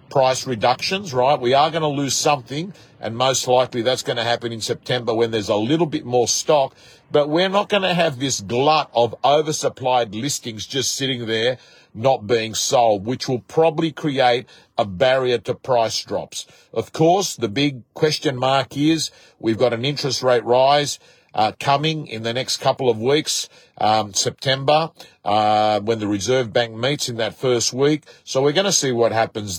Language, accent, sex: English, Australian, male